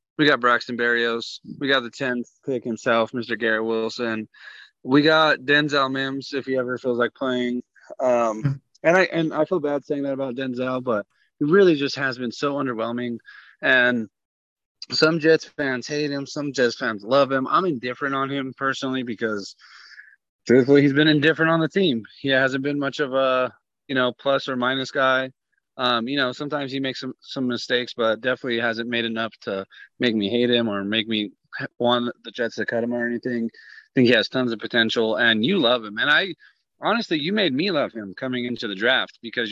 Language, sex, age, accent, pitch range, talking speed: English, male, 20-39, American, 115-135 Hz, 200 wpm